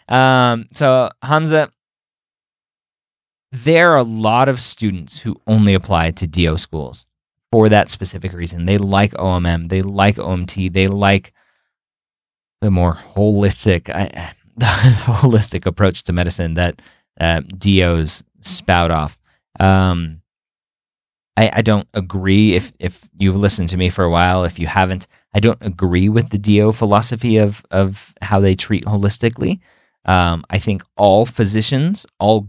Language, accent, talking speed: English, American, 140 wpm